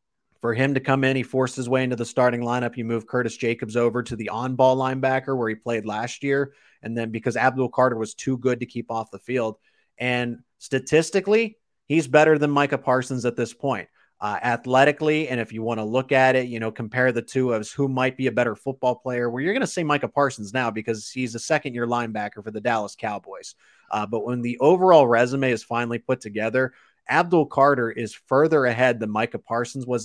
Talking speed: 215 wpm